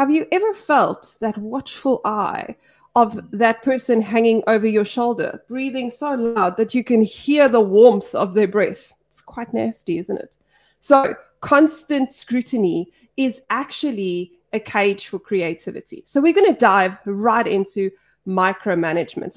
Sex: female